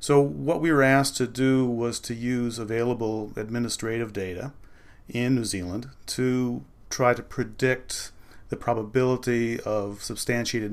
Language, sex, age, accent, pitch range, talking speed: English, male, 40-59, American, 105-120 Hz, 135 wpm